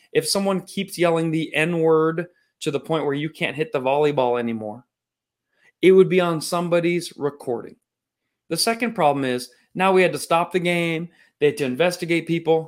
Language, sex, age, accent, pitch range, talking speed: English, male, 30-49, American, 150-240 Hz, 180 wpm